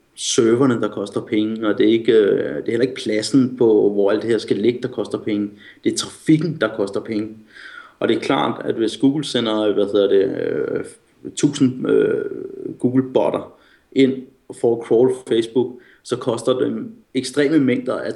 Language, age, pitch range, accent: Danish, 30-49, 110-150 Hz, native